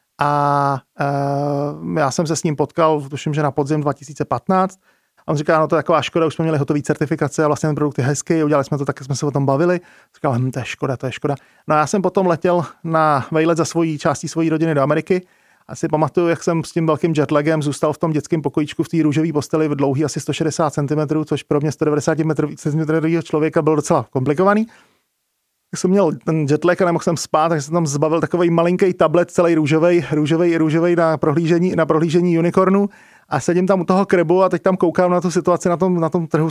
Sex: male